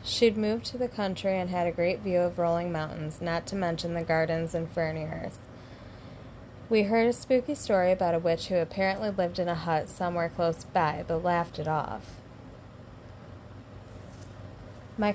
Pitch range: 155-190 Hz